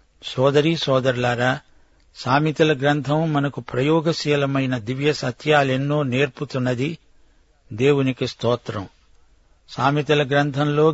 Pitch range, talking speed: 125-150 Hz, 70 wpm